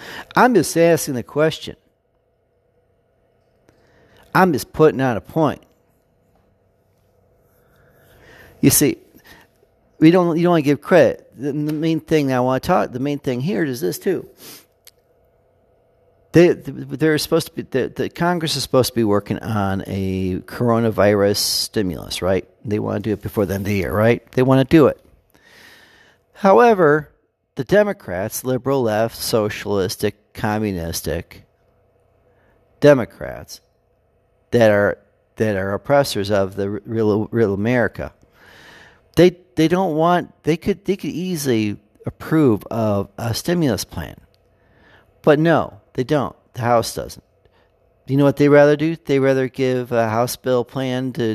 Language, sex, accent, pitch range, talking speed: English, male, American, 100-150 Hz, 145 wpm